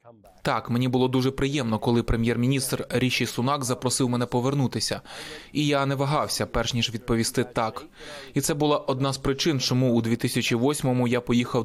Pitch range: 120-135 Hz